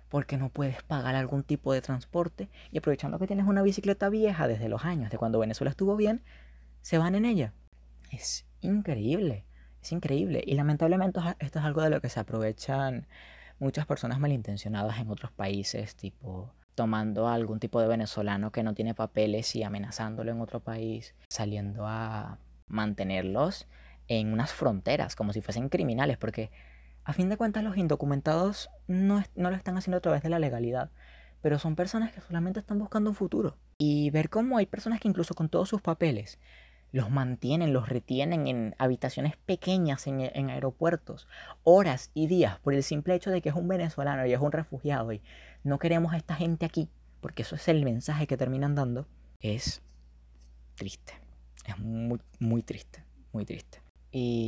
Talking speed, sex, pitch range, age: 175 wpm, female, 110-165 Hz, 20-39